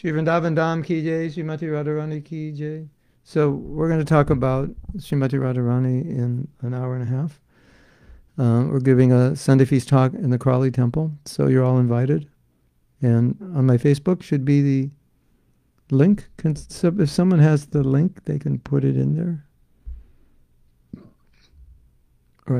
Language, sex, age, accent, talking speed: English, male, 60-79, American, 150 wpm